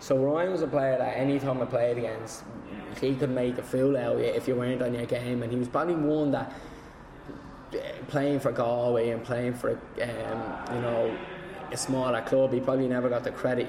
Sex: male